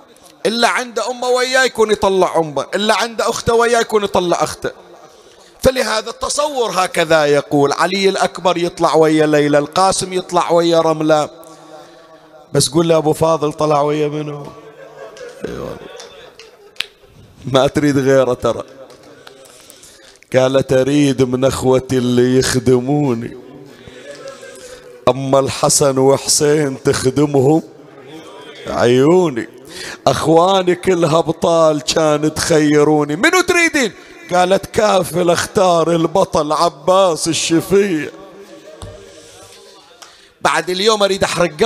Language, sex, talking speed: Arabic, male, 95 wpm